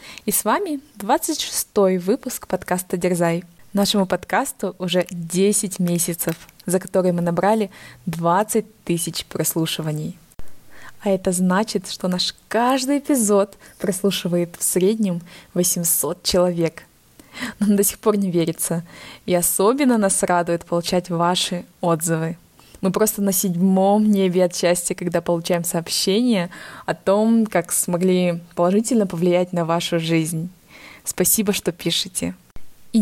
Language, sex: Russian, female